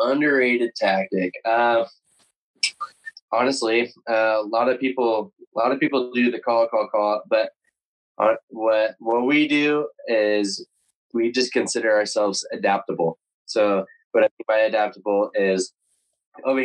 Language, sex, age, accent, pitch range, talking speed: English, male, 20-39, American, 95-125 Hz, 135 wpm